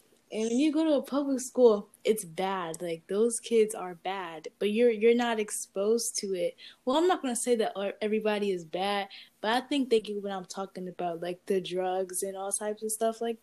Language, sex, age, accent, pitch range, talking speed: English, female, 10-29, American, 190-235 Hz, 225 wpm